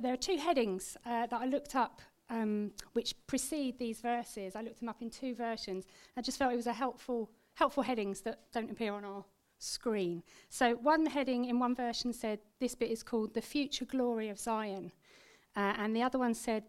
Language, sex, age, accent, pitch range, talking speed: English, female, 40-59, British, 215-275 Hz, 210 wpm